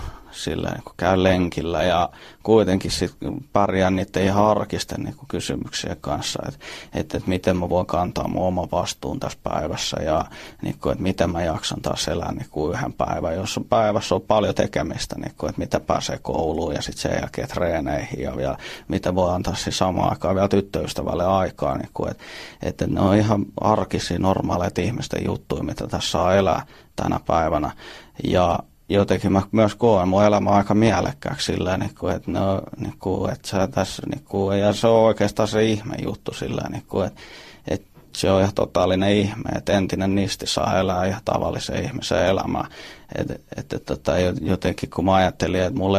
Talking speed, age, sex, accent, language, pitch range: 165 wpm, 30-49, male, native, Finnish, 90-105 Hz